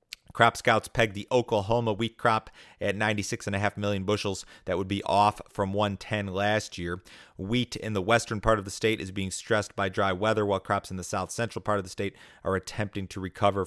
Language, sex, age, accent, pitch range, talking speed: English, male, 30-49, American, 95-105 Hz, 200 wpm